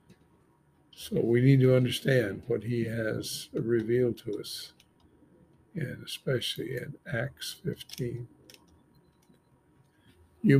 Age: 60-79